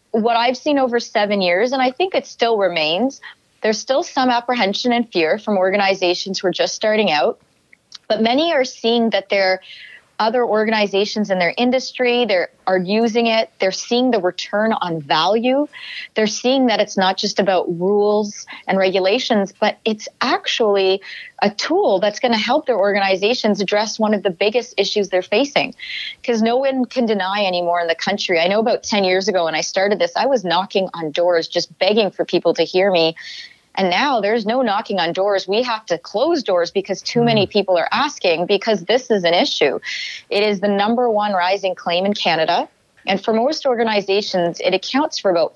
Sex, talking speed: female, 190 wpm